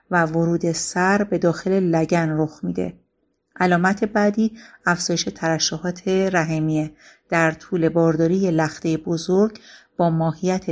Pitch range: 165-200 Hz